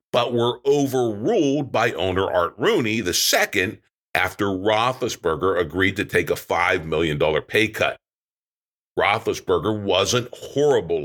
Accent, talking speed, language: American, 115 wpm, English